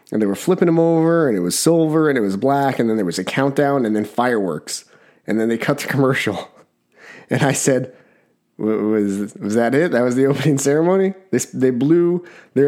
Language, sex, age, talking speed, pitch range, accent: English, male, 30-49, 220 wpm, 120-155 Hz, American